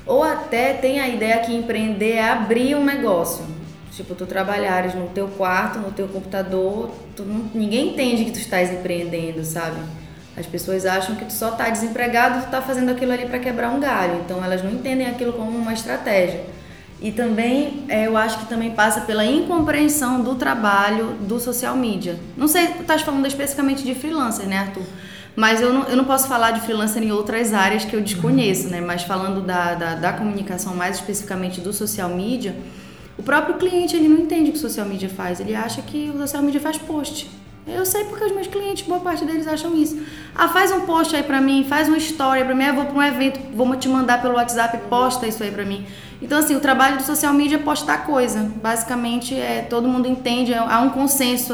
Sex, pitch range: female, 200-275 Hz